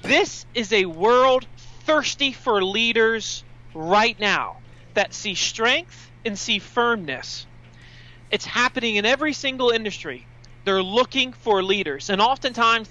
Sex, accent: male, American